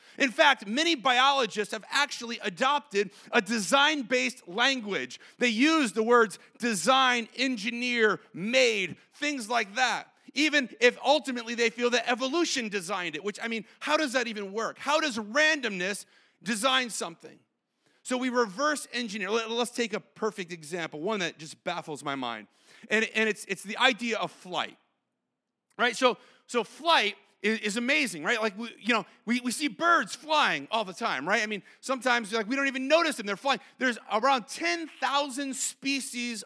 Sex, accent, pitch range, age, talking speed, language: male, American, 215-275 Hz, 40-59, 165 wpm, English